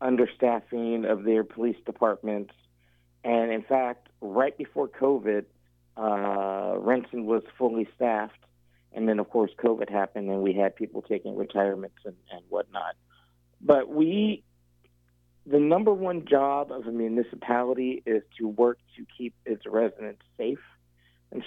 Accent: American